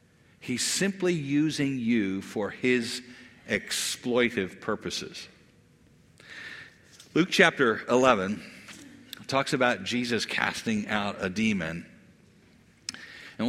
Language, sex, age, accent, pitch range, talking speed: English, male, 50-69, American, 105-150 Hz, 90 wpm